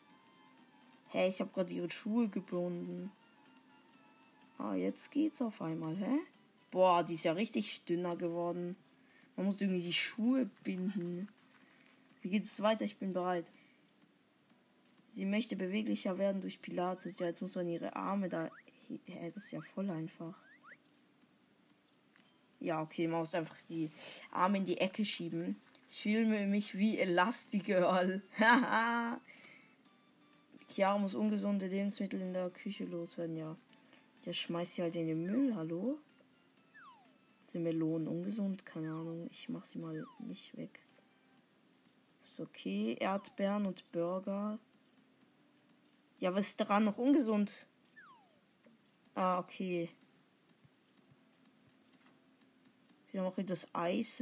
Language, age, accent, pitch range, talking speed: German, 20-39, German, 175-240 Hz, 130 wpm